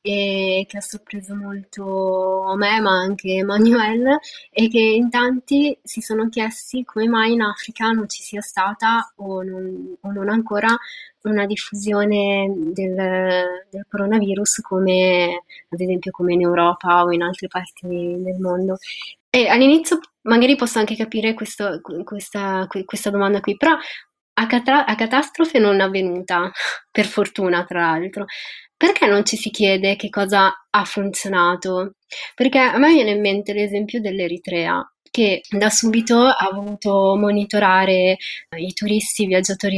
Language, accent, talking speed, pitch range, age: Italian, native, 145 wpm, 185-220 Hz, 20-39